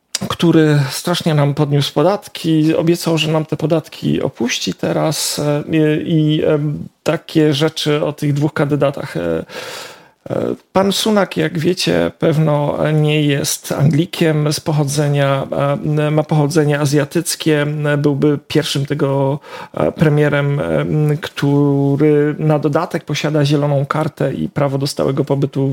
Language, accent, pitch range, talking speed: Polish, native, 140-160 Hz, 110 wpm